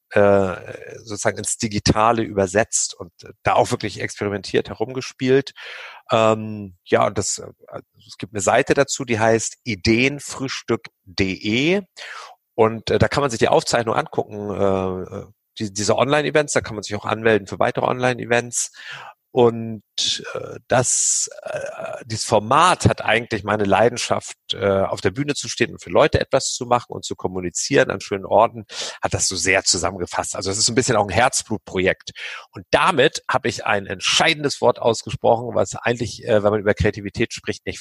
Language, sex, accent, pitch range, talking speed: German, male, German, 100-125 Hz, 150 wpm